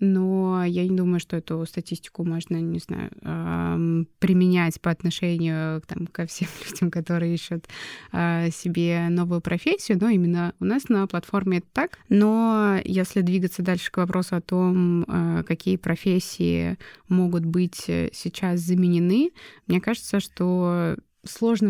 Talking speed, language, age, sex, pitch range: 130 wpm, Russian, 20-39, female, 175-195 Hz